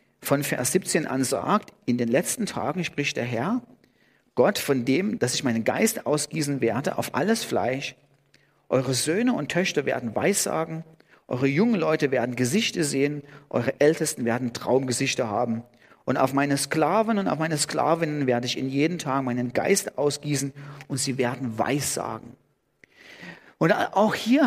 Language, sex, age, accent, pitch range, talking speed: German, male, 40-59, German, 145-205 Hz, 155 wpm